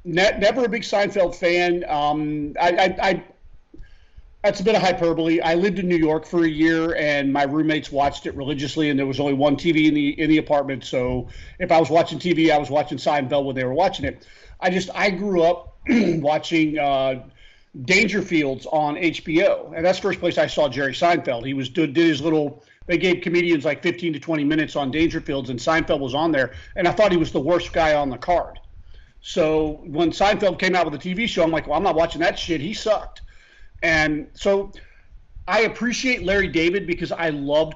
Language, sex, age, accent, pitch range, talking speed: English, male, 40-59, American, 150-190 Hz, 205 wpm